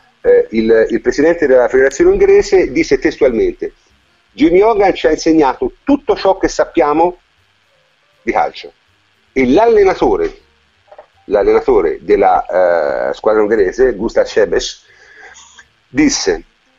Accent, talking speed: native, 105 wpm